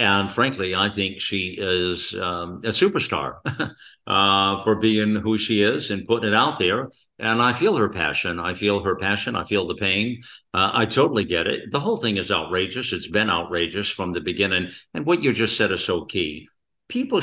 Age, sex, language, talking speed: 60-79, male, English, 200 wpm